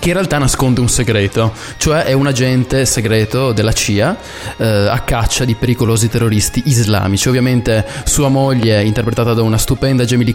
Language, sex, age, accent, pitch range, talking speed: Italian, male, 20-39, native, 110-135 Hz, 160 wpm